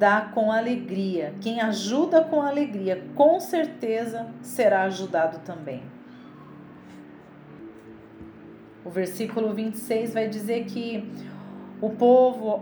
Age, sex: 40-59, female